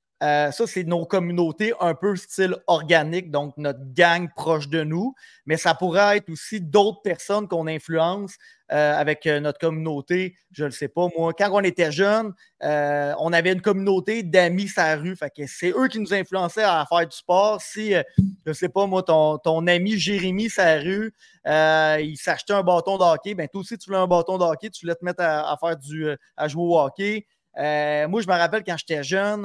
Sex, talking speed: male, 215 wpm